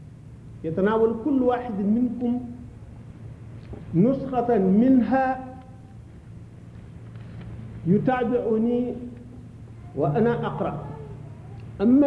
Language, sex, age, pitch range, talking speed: French, male, 50-69, 125-170 Hz, 50 wpm